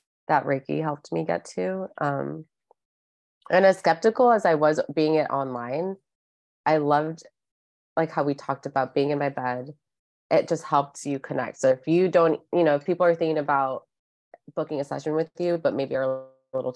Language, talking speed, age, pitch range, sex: English, 190 wpm, 20-39, 130-160 Hz, female